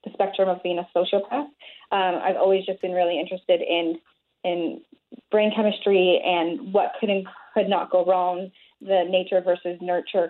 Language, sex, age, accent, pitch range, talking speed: English, female, 20-39, American, 185-215 Hz, 170 wpm